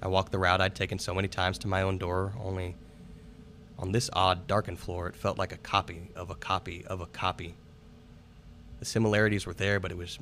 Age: 20-39